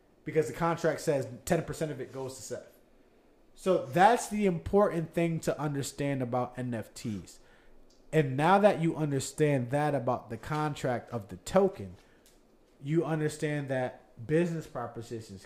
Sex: male